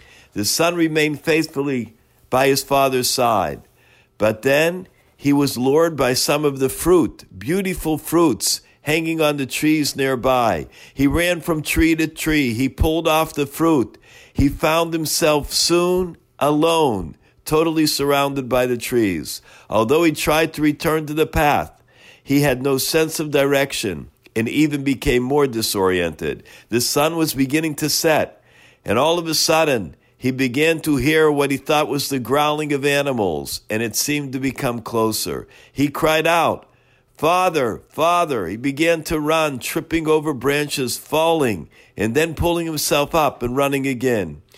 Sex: male